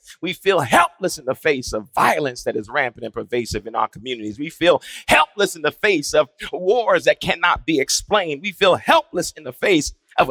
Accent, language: American, English